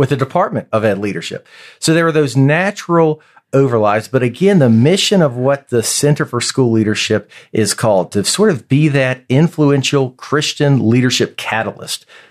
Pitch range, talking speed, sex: 110-140 Hz, 165 wpm, male